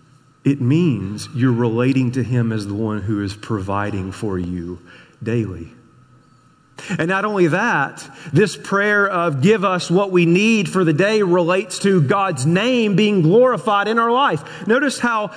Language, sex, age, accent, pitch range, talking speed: English, male, 40-59, American, 145-210 Hz, 160 wpm